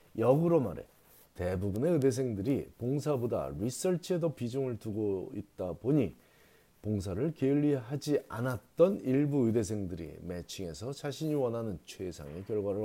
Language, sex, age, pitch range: Korean, male, 40-59, 95-130 Hz